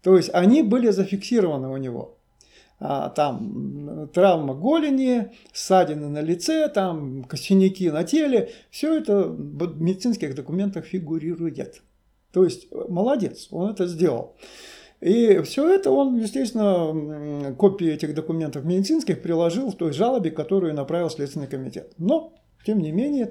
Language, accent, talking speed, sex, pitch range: Russian, native, 130 wpm, male, 155-210 Hz